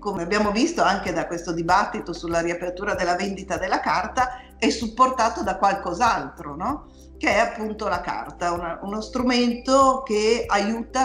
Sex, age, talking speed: female, 50-69, 150 wpm